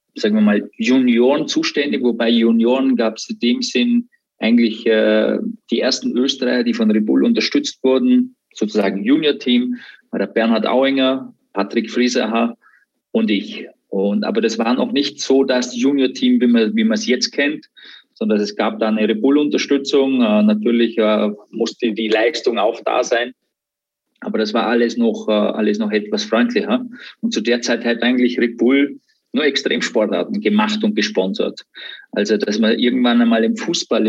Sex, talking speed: male, 160 wpm